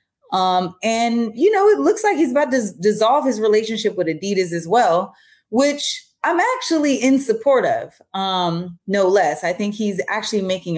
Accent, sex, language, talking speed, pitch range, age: American, female, English, 175 wpm, 170-220 Hz, 20-39